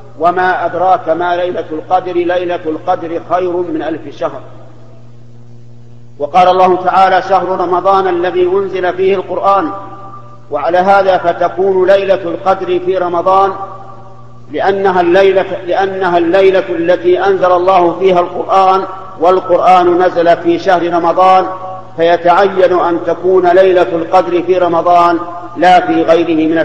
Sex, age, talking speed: male, 50-69, 115 wpm